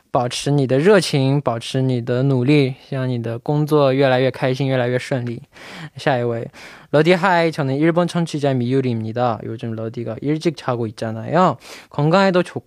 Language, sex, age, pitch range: Chinese, male, 20-39, 130-165 Hz